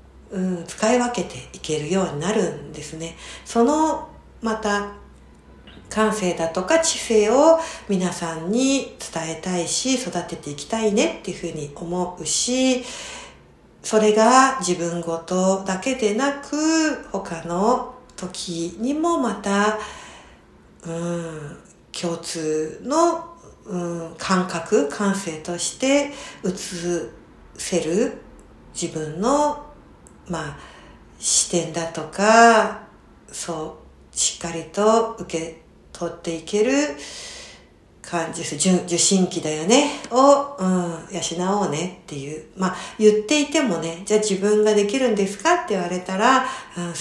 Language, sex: Japanese, female